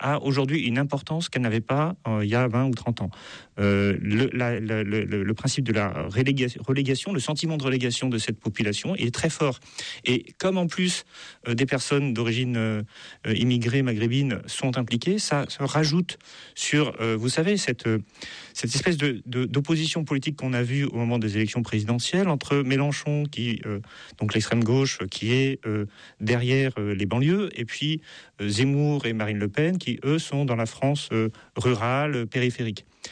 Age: 40-59